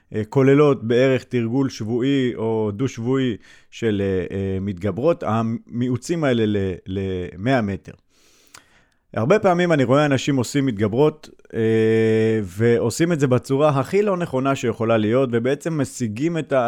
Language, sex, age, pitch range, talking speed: Hebrew, male, 30-49, 105-135 Hz, 120 wpm